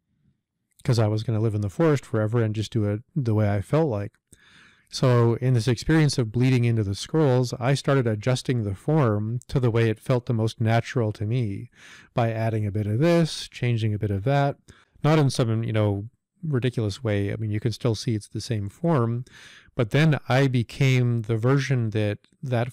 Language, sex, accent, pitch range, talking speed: English, male, American, 110-130 Hz, 210 wpm